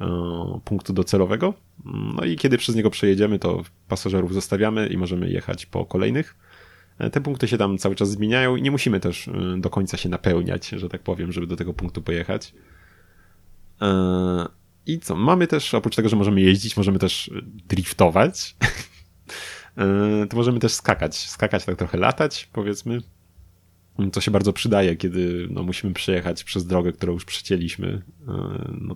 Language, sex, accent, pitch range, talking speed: Polish, male, native, 90-105 Hz, 150 wpm